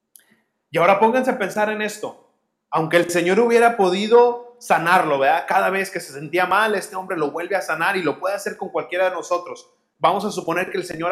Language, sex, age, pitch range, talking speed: Spanish, male, 30-49, 165-195 Hz, 215 wpm